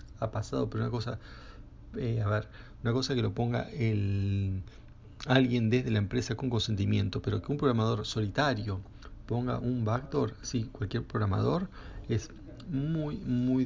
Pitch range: 110-130 Hz